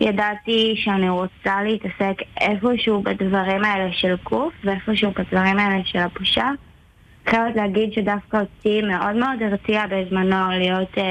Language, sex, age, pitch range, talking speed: Hebrew, female, 20-39, 190-210 Hz, 125 wpm